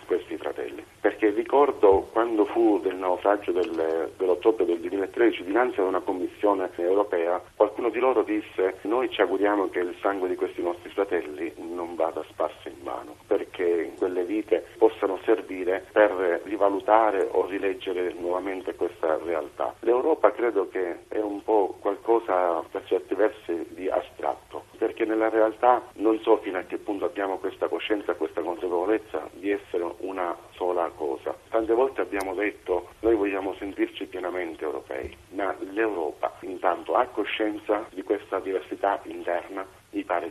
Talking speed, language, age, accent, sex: 145 wpm, Italian, 50-69, native, male